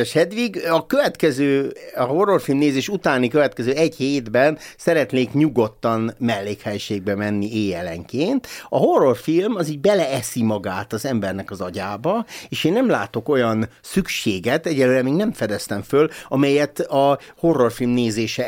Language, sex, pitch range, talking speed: Hungarian, male, 110-150 Hz, 130 wpm